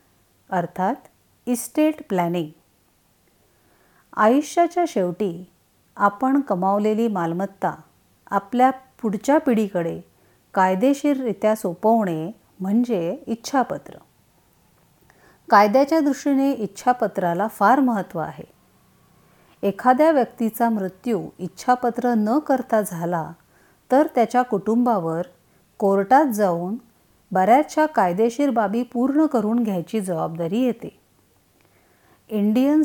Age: 50-69